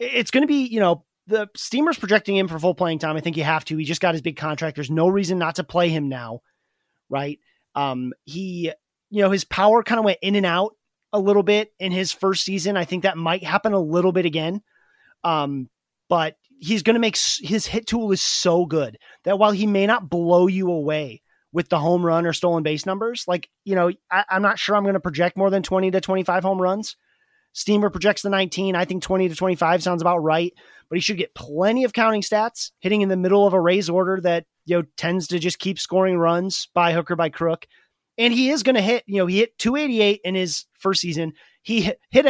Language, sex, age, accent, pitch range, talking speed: English, male, 30-49, American, 170-210 Hz, 235 wpm